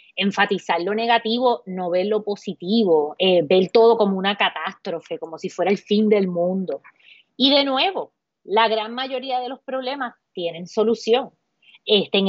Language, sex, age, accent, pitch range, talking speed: Spanish, female, 20-39, American, 185-245 Hz, 155 wpm